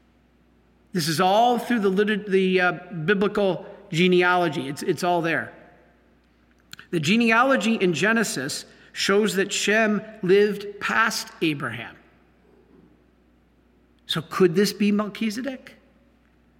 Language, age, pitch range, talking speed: English, 50-69, 175-225 Hz, 105 wpm